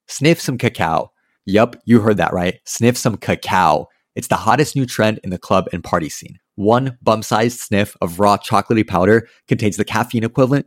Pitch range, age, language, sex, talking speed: 95-120 Hz, 30-49, English, male, 185 wpm